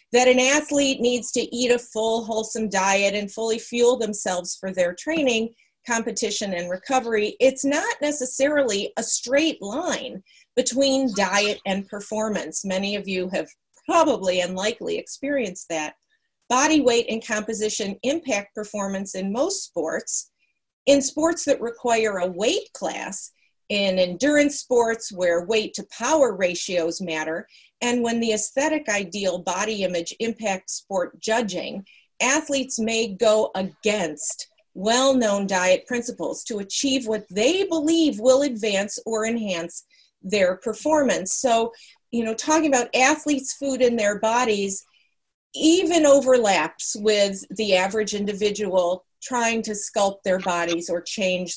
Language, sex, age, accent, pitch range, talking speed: English, female, 40-59, American, 195-260 Hz, 135 wpm